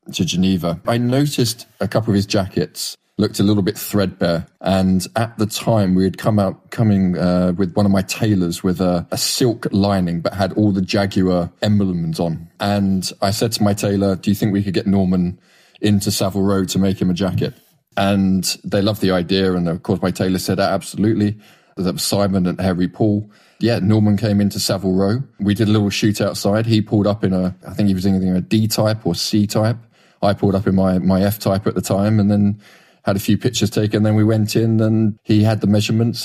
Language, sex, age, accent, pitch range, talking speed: English, male, 20-39, British, 95-110 Hz, 220 wpm